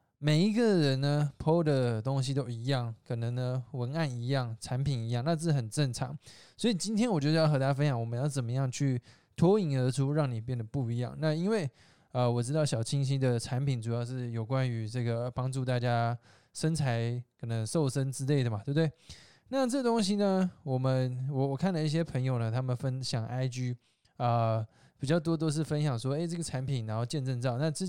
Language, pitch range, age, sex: Chinese, 125-155 Hz, 20-39, male